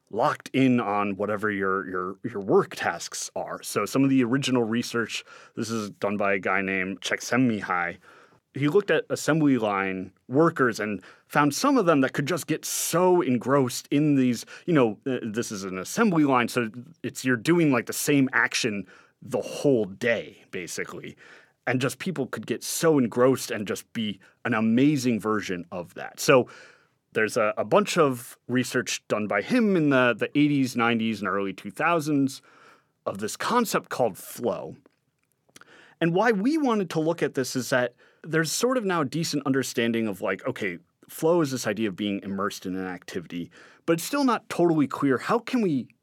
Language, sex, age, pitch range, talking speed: English, male, 30-49, 105-150 Hz, 180 wpm